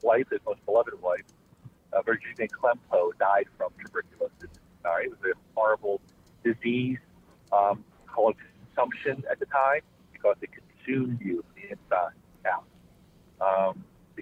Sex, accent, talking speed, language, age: male, American, 140 wpm, English, 50-69